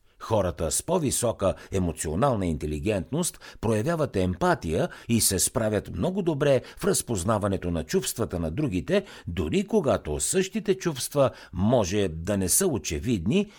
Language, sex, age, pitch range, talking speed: Bulgarian, male, 60-79, 85-145 Hz, 120 wpm